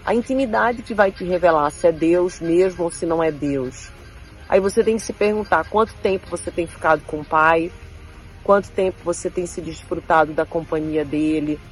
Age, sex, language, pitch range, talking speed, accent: 40-59, female, Portuguese, 155-185 Hz, 195 wpm, Brazilian